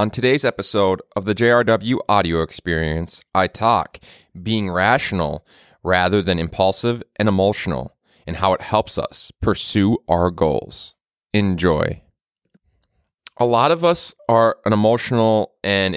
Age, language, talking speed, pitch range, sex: 30-49, English, 130 wpm, 85-105 Hz, male